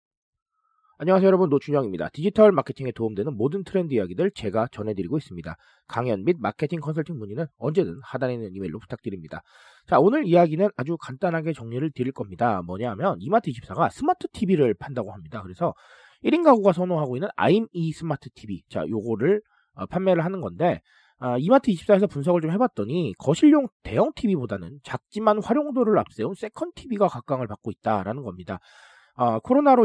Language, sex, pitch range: Korean, male, 125-205 Hz